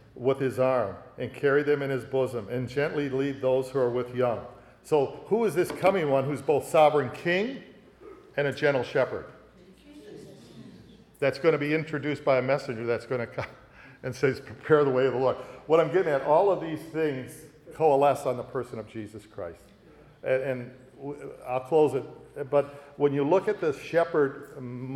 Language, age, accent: English, 50-69, American